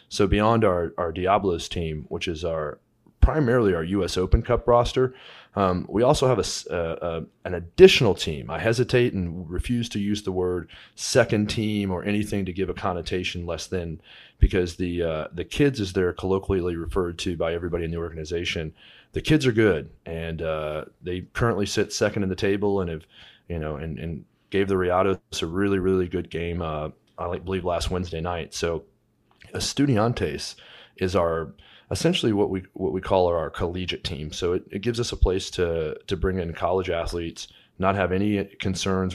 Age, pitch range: 30-49, 85-100 Hz